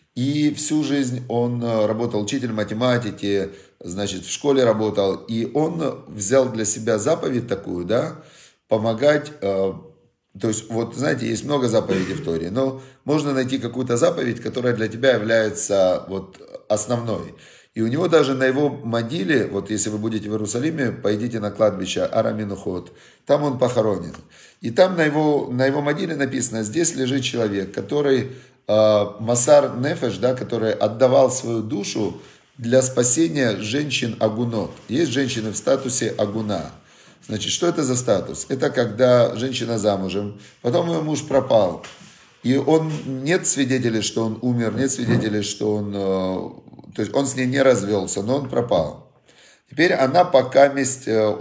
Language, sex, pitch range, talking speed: Russian, male, 110-135 Hz, 145 wpm